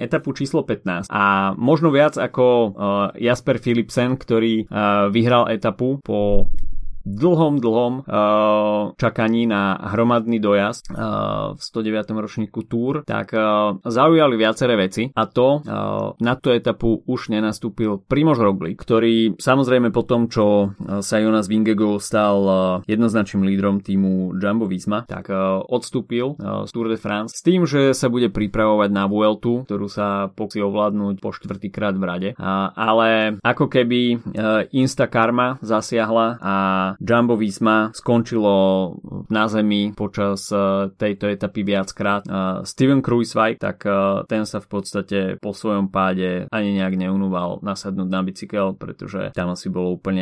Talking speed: 145 wpm